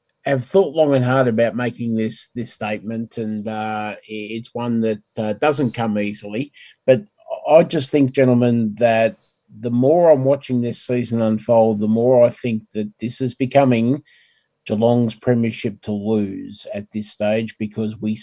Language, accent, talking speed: English, Australian, 160 wpm